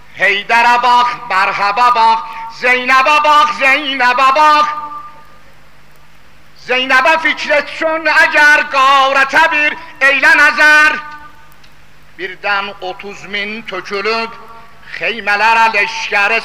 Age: 60-79